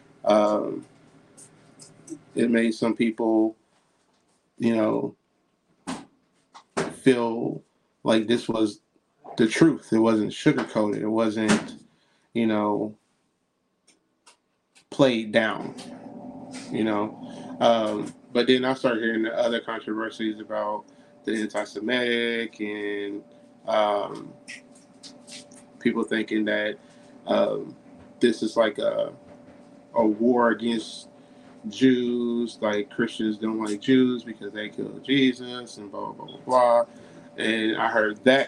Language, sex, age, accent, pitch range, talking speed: English, male, 20-39, American, 110-140 Hz, 105 wpm